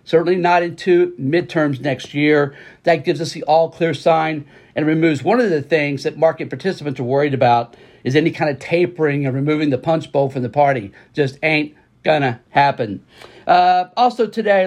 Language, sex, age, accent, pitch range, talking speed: English, male, 50-69, American, 145-185 Hz, 190 wpm